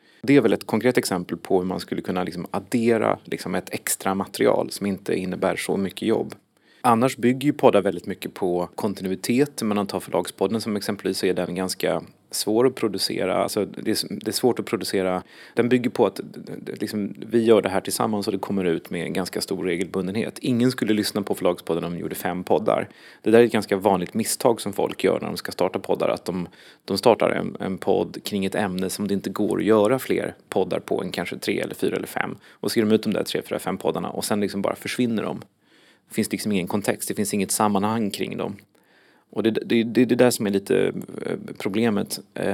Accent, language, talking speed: native, Swedish, 225 wpm